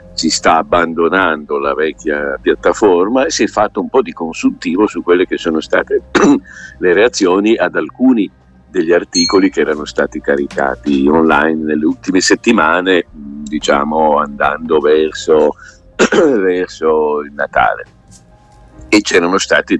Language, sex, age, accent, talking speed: Italian, male, 50-69, native, 125 wpm